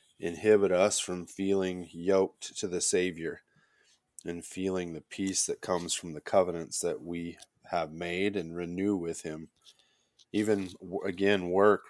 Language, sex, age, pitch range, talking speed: English, male, 20-39, 85-100 Hz, 140 wpm